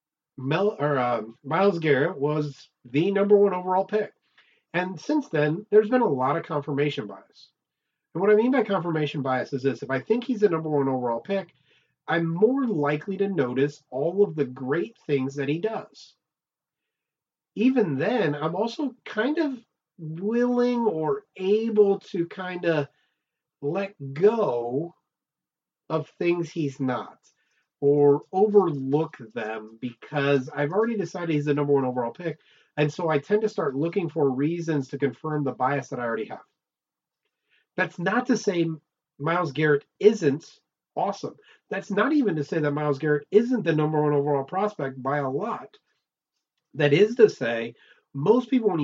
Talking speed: 160 wpm